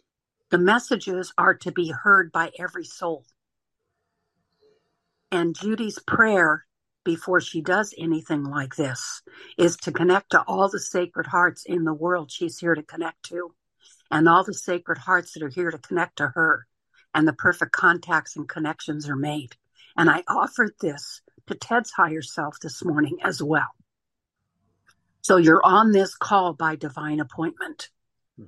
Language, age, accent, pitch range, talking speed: English, 60-79, American, 155-195 Hz, 155 wpm